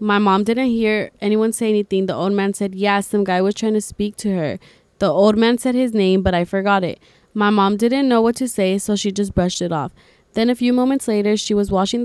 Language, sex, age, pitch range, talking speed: English, female, 20-39, 185-215 Hz, 260 wpm